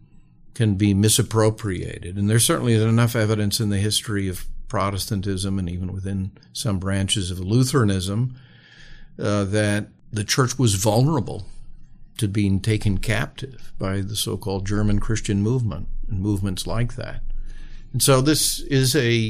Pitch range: 100-125 Hz